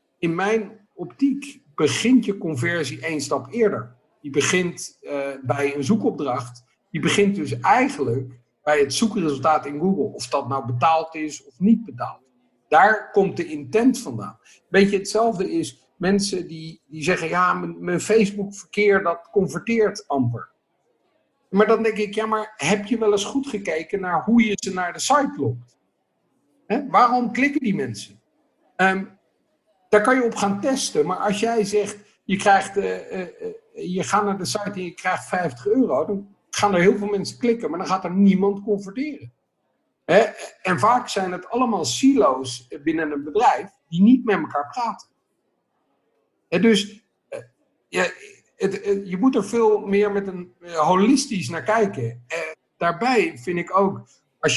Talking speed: 155 wpm